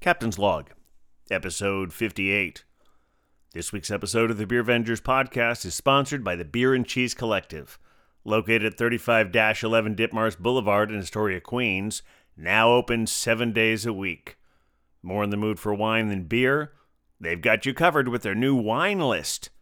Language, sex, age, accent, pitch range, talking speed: English, male, 40-59, American, 95-140 Hz, 155 wpm